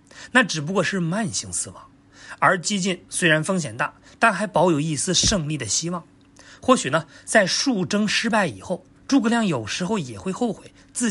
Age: 30-49